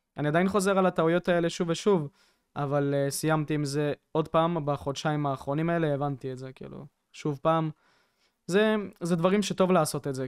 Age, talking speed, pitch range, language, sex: 20-39, 180 wpm, 145-180 Hz, Hebrew, male